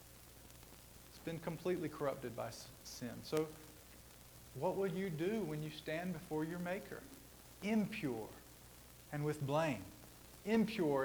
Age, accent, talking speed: 40-59, American, 115 wpm